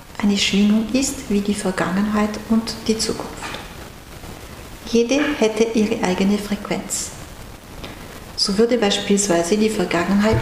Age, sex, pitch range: 60-79, female, 195-230 Hz